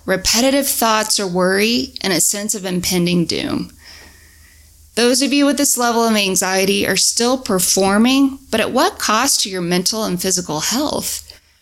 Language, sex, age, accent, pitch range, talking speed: English, female, 20-39, American, 165-230 Hz, 160 wpm